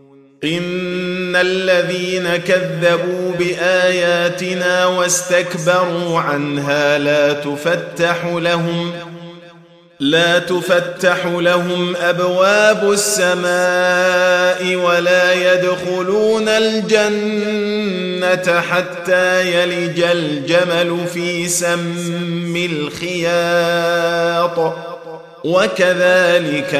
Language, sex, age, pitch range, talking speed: Arabic, male, 30-49, 145-180 Hz, 55 wpm